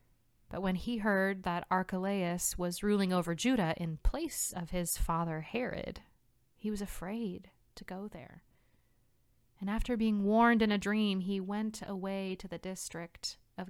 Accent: American